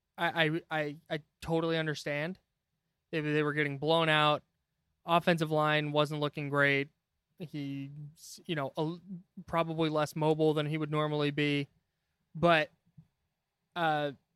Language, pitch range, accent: English, 150-170 Hz, American